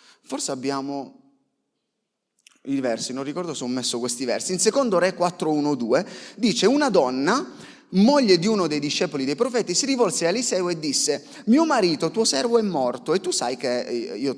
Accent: native